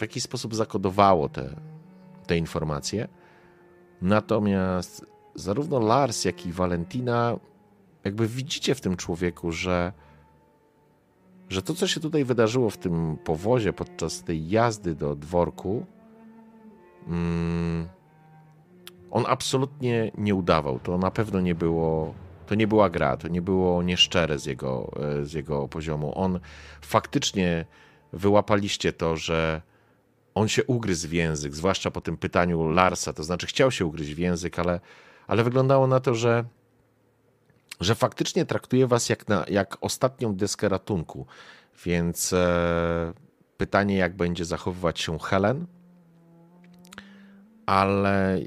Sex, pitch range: male, 85-130 Hz